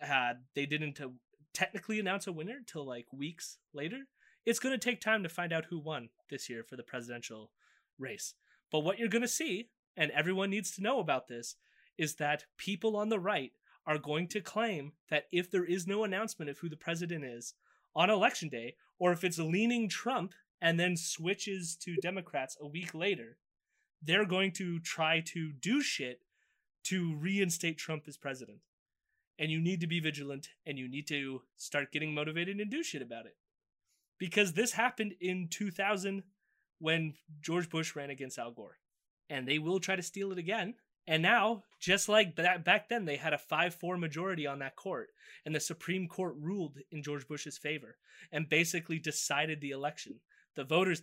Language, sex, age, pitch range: English, male, 20-39, 150-195 Hz